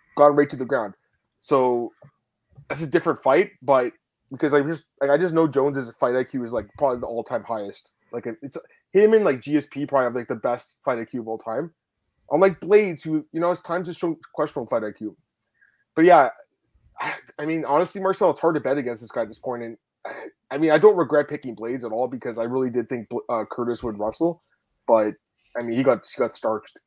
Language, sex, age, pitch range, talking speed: English, male, 20-39, 120-155 Hz, 220 wpm